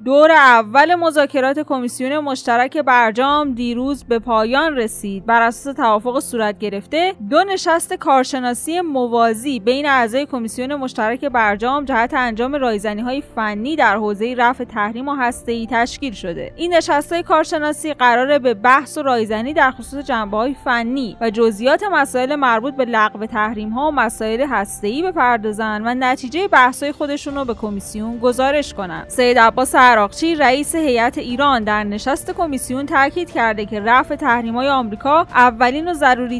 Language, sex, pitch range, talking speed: Persian, female, 230-285 Hz, 140 wpm